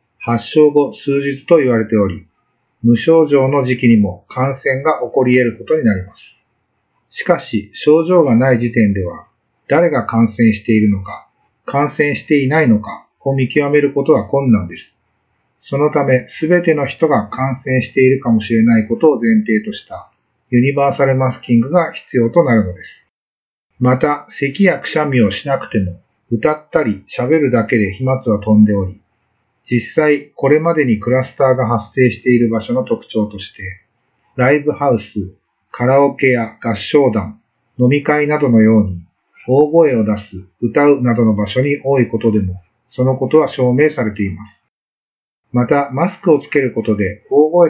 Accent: native